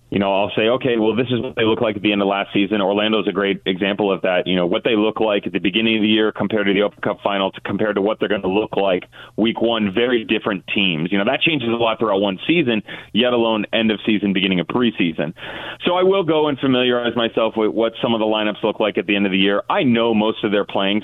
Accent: American